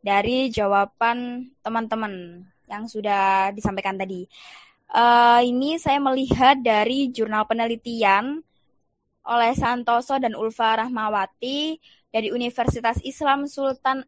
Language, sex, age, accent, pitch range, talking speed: Indonesian, female, 20-39, native, 220-260 Hz, 100 wpm